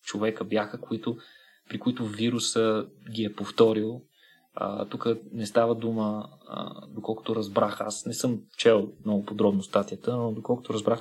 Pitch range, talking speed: 105-125 Hz, 145 wpm